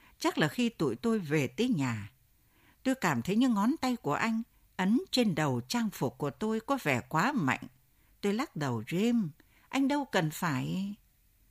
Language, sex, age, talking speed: Vietnamese, female, 60-79, 180 wpm